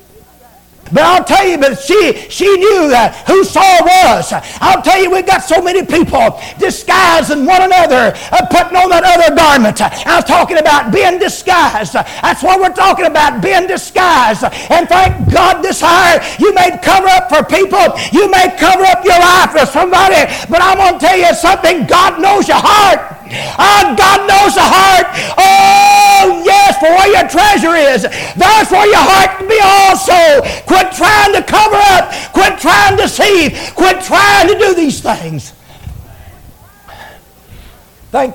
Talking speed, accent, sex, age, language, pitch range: 165 wpm, American, male, 50-69, English, 240-380 Hz